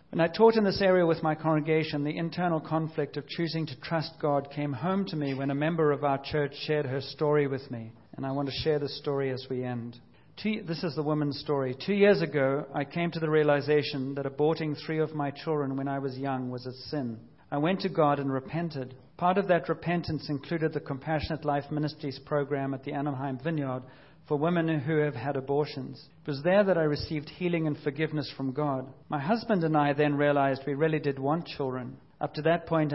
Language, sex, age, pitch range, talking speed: English, male, 50-69, 140-160 Hz, 220 wpm